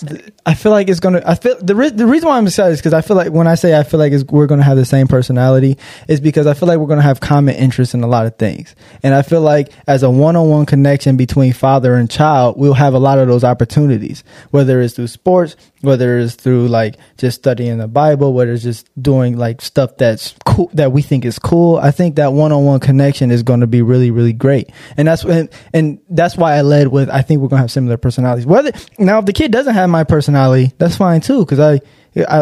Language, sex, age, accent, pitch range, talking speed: English, male, 20-39, American, 130-165 Hz, 255 wpm